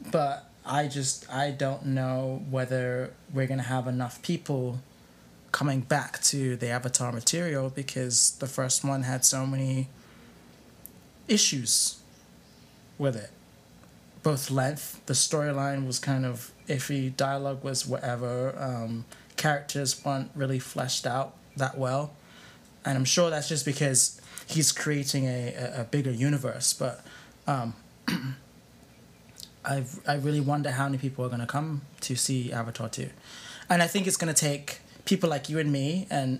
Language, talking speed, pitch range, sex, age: English, 150 wpm, 120-145 Hz, male, 20-39